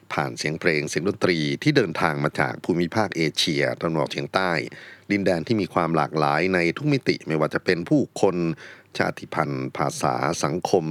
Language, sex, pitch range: Thai, male, 75-95 Hz